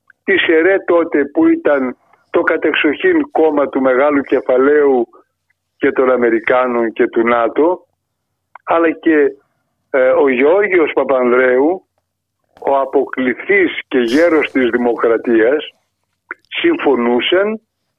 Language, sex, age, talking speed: Greek, male, 60-79, 95 wpm